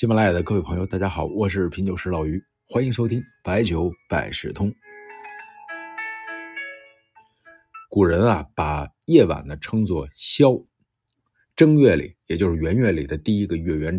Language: Chinese